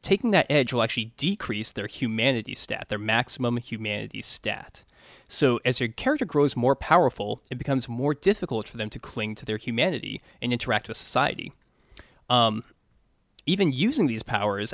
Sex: male